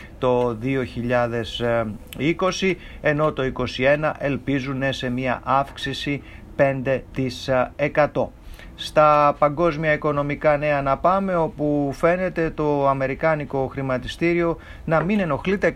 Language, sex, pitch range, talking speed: English, male, 125-150 Hz, 90 wpm